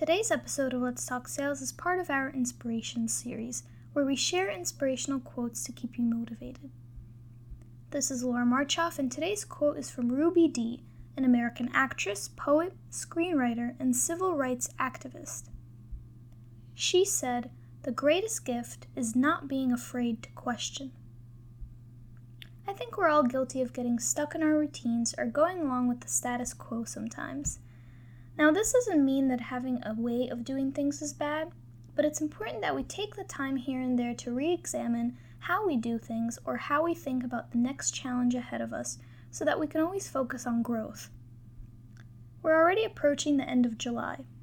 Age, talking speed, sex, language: 10-29, 170 wpm, female, English